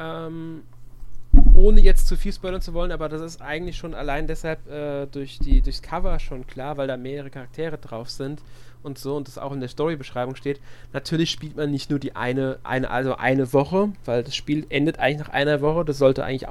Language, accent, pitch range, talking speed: German, German, 130-160 Hz, 210 wpm